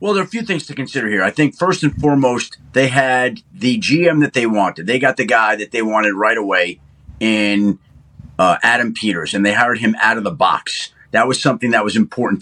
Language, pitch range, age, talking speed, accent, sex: English, 115-145 Hz, 40-59, 230 wpm, American, male